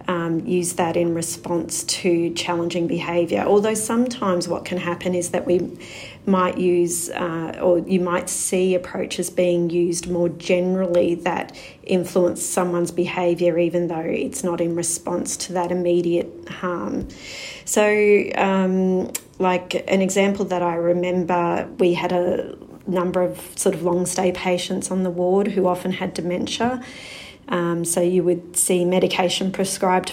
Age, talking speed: 40-59, 145 wpm